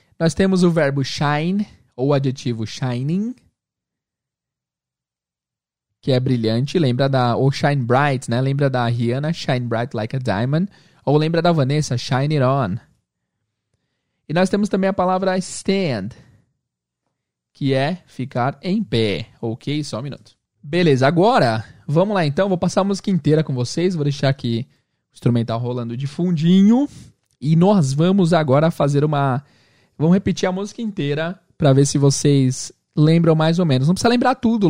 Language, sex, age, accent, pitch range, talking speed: Portuguese, male, 20-39, Brazilian, 125-175 Hz, 160 wpm